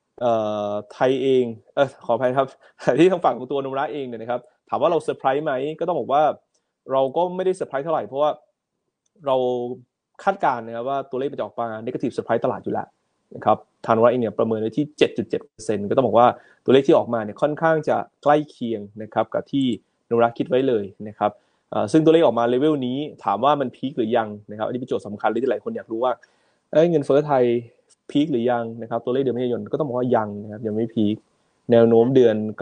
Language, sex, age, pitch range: Thai, male, 20-39, 110-140 Hz